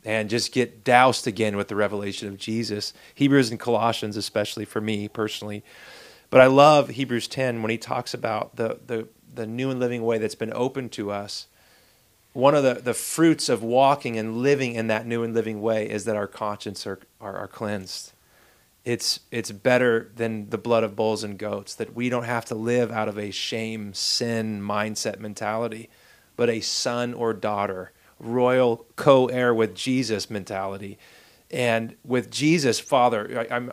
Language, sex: English, male